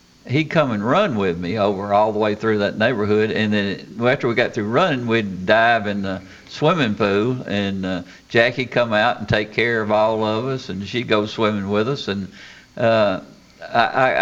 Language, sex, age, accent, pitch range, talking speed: English, male, 60-79, American, 95-110 Hz, 205 wpm